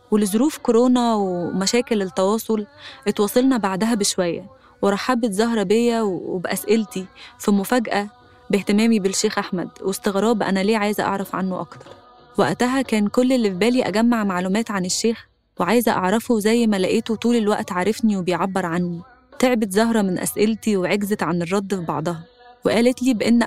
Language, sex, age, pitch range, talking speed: Arabic, female, 20-39, 190-225 Hz, 140 wpm